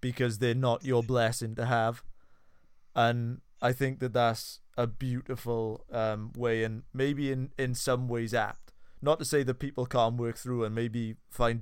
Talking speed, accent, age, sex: 175 wpm, British, 20-39, male